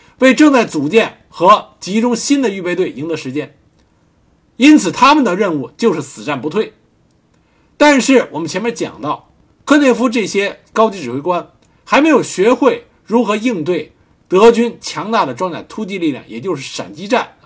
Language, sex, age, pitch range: Chinese, male, 50-69, 165-245 Hz